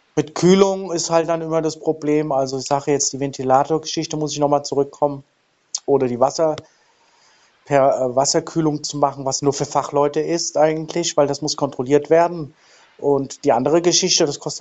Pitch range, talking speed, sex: 130-155 Hz, 175 wpm, male